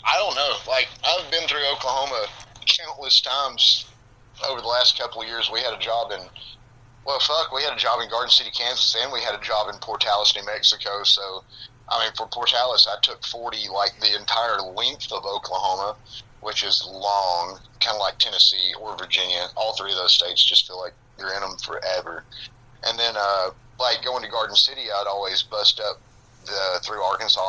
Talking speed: 195 wpm